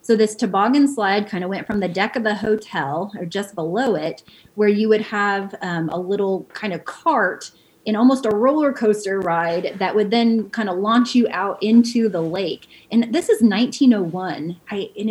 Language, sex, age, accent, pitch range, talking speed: English, female, 30-49, American, 185-235 Hz, 195 wpm